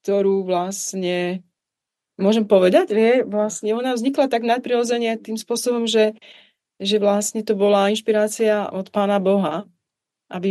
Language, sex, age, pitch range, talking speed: Czech, female, 30-49, 195-245 Hz, 125 wpm